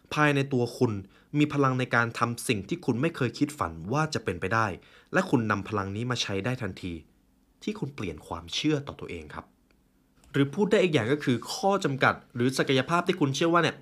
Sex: male